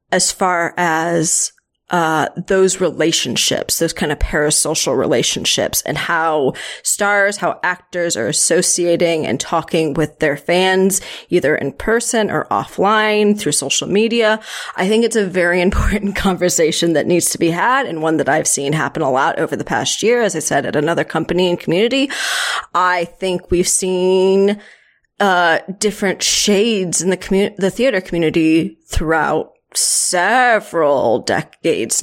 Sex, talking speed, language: female, 150 wpm, English